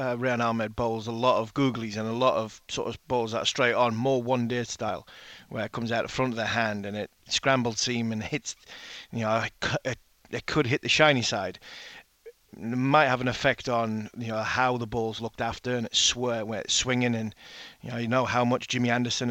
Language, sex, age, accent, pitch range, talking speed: English, male, 30-49, British, 115-135 Hz, 225 wpm